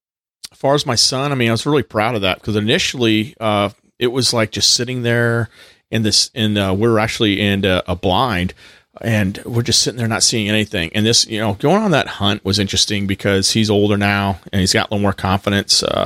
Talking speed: 235 wpm